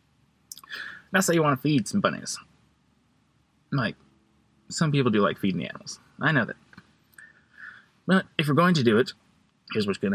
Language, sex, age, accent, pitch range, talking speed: English, male, 20-39, American, 120-170 Hz, 175 wpm